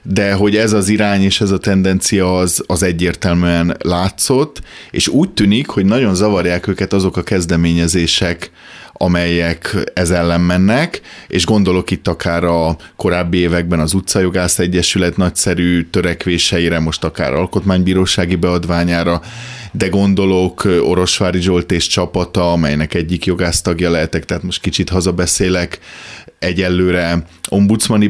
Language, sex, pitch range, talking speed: Hungarian, male, 85-100 Hz, 125 wpm